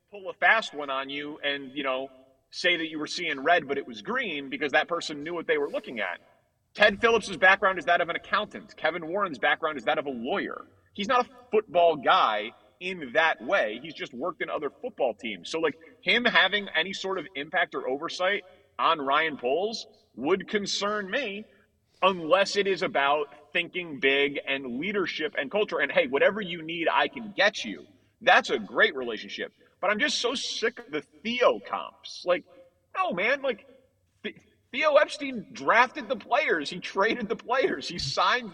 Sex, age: male, 30-49